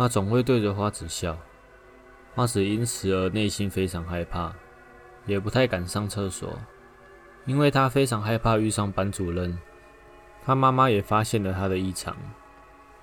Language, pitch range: Chinese, 95-115 Hz